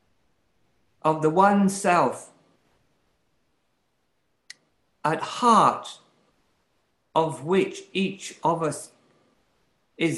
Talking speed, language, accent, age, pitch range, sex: 70 wpm, English, British, 60-79, 135-175 Hz, male